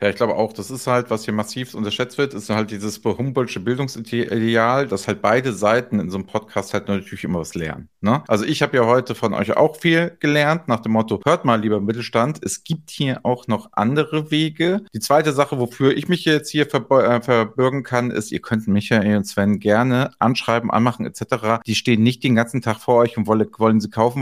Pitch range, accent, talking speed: 110-150 Hz, German, 220 wpm